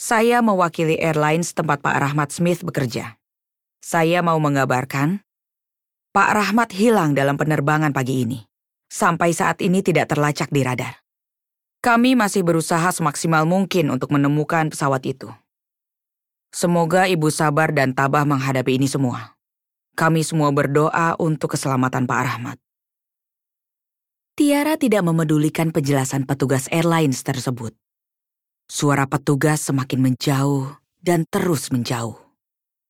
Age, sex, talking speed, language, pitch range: 20-39, female, 115 wpm, Indonesian, 135-175 Hz